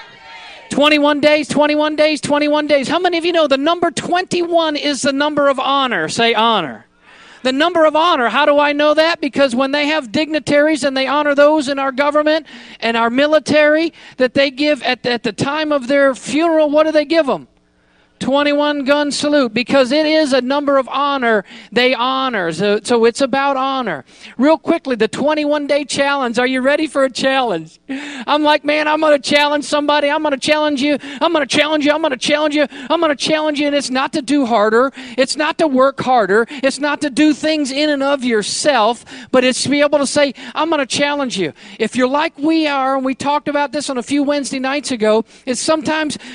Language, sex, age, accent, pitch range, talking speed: English, male, 50-69, American, 245-300 Hz, 215 wpm